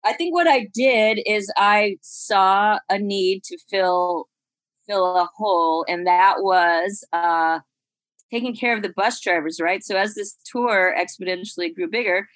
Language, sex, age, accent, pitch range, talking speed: English, female, 30-49, American, 175-225 Hz, 160 wpm